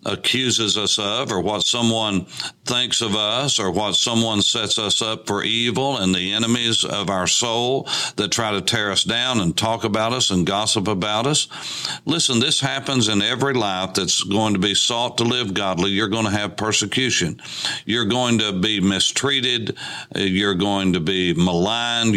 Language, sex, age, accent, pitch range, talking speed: English, male, 60-79, American, 95-125 Hz, 180 wpm